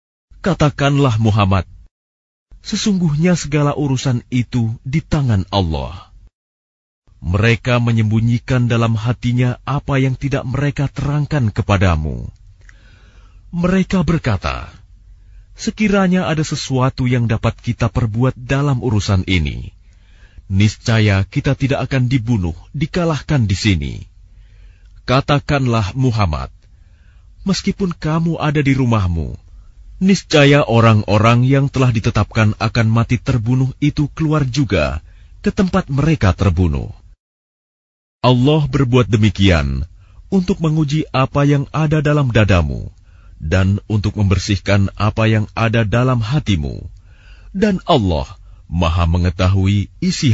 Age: 40-59